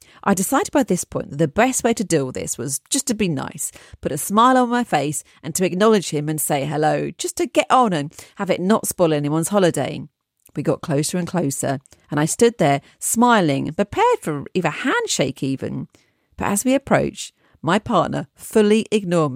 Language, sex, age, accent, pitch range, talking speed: English, female, 40-59, British, 165-245 Hz, 205 wpm